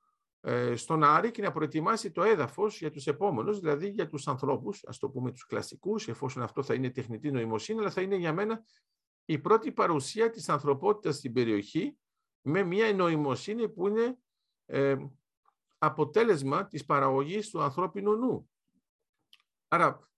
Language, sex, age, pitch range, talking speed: Greek, male, 50-69, 130-200 Hz, 150 wpm